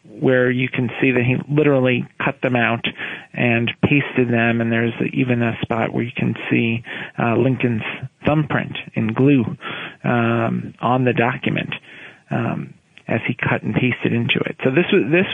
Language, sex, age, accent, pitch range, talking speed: English, male, 40-59, American, 120-150 Hz, 170 wpm